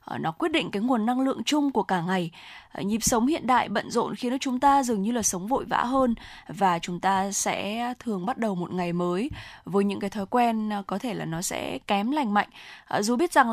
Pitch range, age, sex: 190-245 Hz, 10-29, female